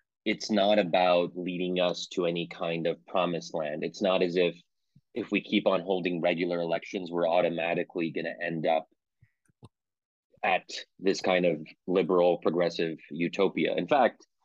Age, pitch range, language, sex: 30-49, 90-100 Hz, English, male